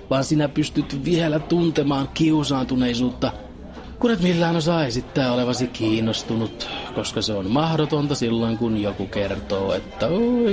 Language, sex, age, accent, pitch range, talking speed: Finnish, male, 30-49, native, 115-160 Hz, 130 wpm